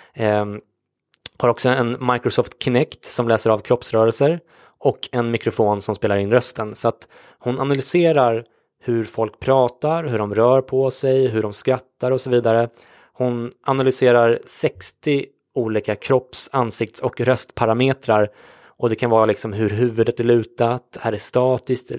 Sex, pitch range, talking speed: male, 110-130 Hz, 145 wpm